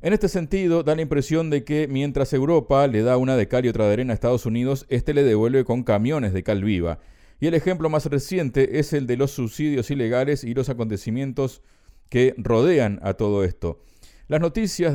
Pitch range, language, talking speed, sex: 115-140 Hz, Spanish, 205 wpm, male